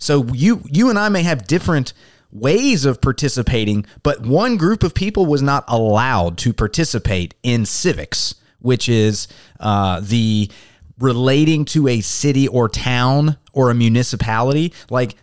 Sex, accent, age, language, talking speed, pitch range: male, American, 30-49, English, 145 wpm, 110-140 Hz